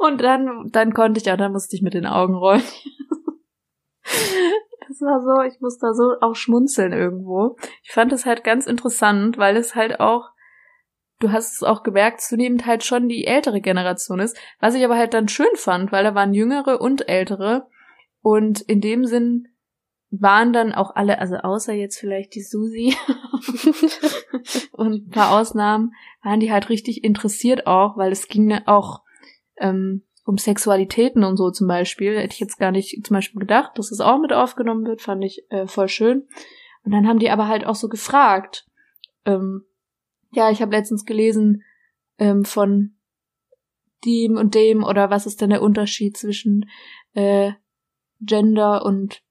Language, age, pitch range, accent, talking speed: German, 20-39, 200-240 Hz, German, 175 wpm